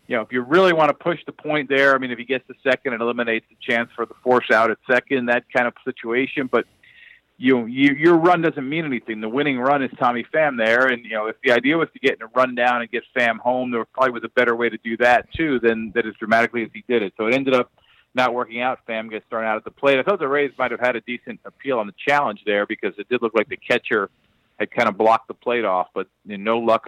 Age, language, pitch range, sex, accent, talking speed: 40-59, English, 115-135 Hz, male, American, 290 wpm